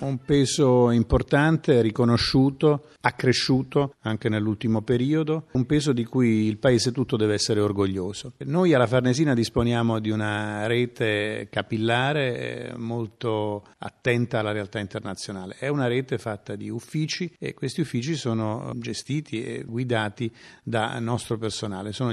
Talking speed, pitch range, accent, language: 130 wpm, 105-130 Hz, native, Italian